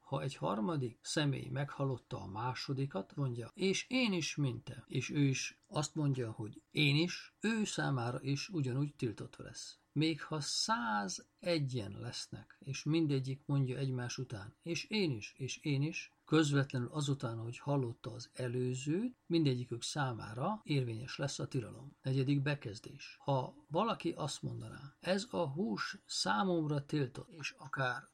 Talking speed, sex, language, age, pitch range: 145 wpm, male, Hungarian, 50-69, 130-155 Hz